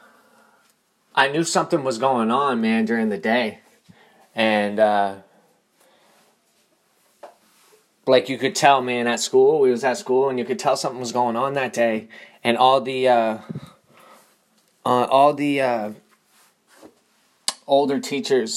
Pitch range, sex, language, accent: 115-185 Hz, male, English, American